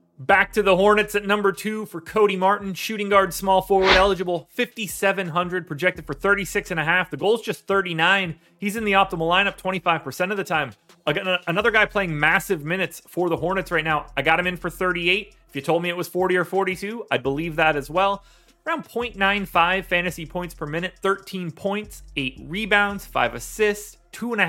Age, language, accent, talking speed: 30-49, English, American, 200 wpm